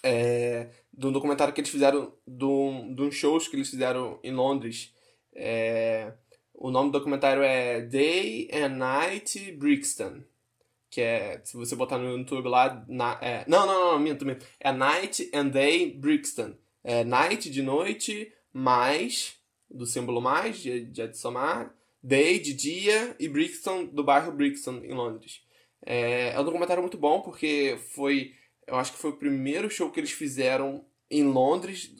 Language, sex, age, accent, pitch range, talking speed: Portuguese, male, 10-29, Brazilian, 125-150 Hz, 165 wpm